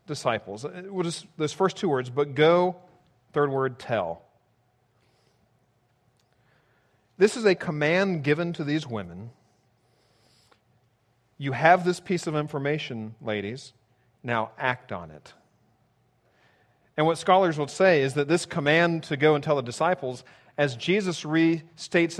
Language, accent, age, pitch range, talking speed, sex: English, American, 40-59, 120-170 Hz, 135 wpm, male